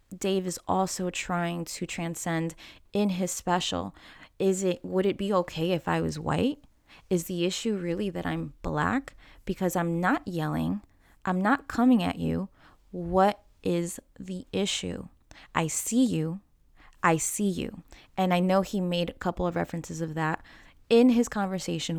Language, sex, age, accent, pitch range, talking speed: English, female, 20-39, American, 165-205 Hz, 160 wpm